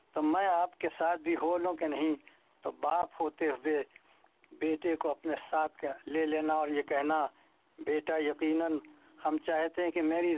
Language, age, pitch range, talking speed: English, 60-79, 145-165 Hz, 160 wpm